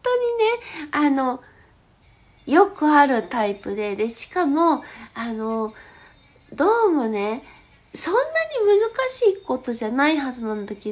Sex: female